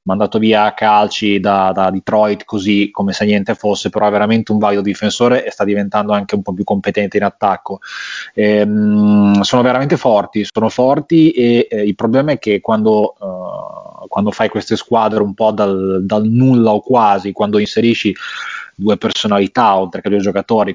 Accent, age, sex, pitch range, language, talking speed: native, 20-39, male, 100-110 Hz, Italian, 180 wpm